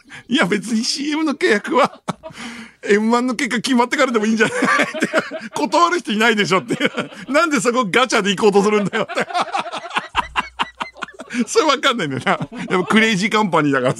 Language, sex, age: Japanese, male, 50-69